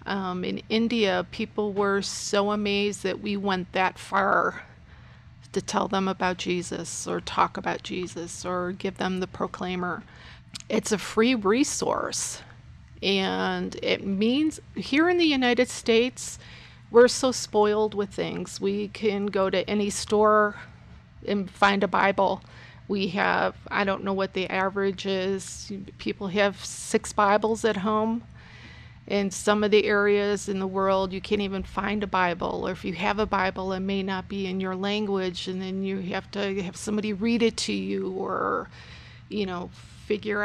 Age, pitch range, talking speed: 40-59, 190-225 Hz, 165 wpm